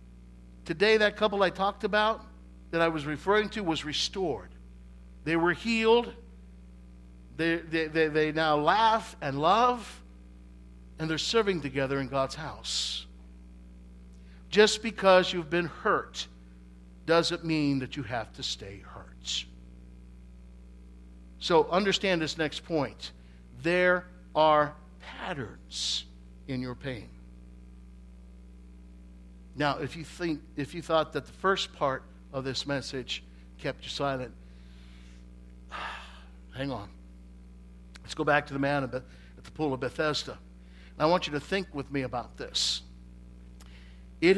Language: English